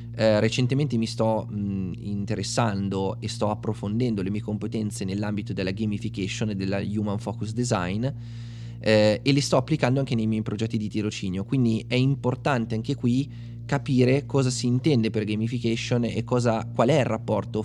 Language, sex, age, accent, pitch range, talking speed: Italian, male, 20-39, native, 105-120 Hz, 155 wpm